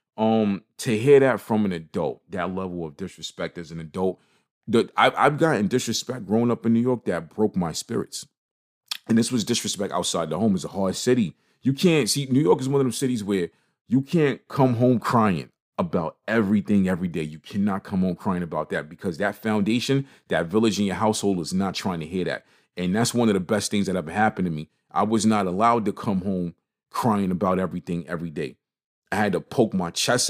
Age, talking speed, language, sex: 40-59, 215 wpm, English, male